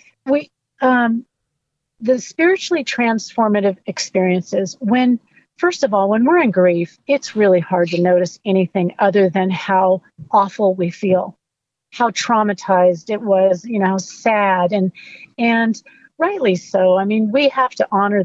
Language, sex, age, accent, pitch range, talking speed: English, female, 50-69, American, 195-260 Hz, 140 wpm